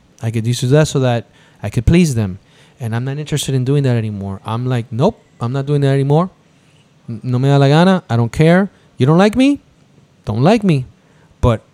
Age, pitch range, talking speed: 20-39, 115-160 Hz, 215 wpm